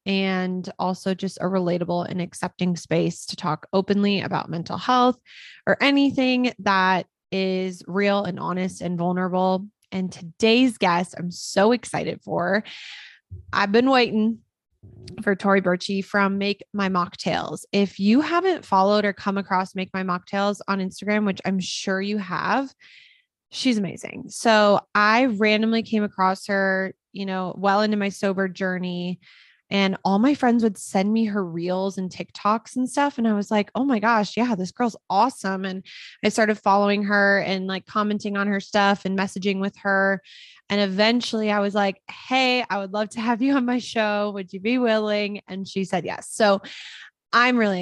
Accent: American